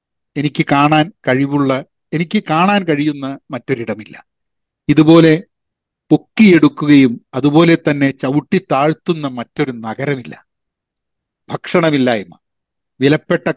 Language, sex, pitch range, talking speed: Malayalam, male, 130-150 Hz, 70 wpm